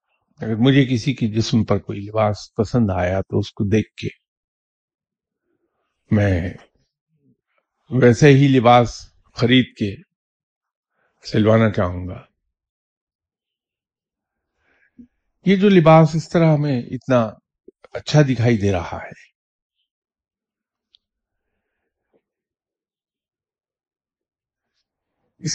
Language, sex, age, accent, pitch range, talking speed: English, male, 50-69, Indian, 100-150 Hz, 85 wpm